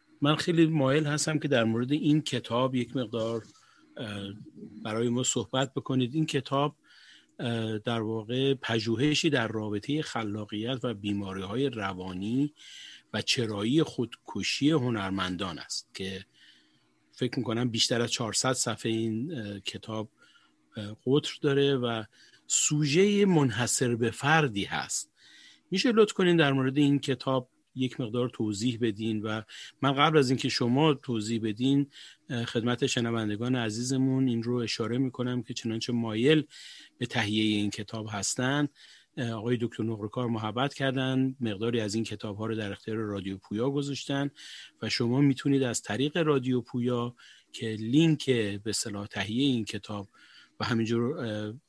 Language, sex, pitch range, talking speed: Persian, male, 110-135 Hz, 130 wpm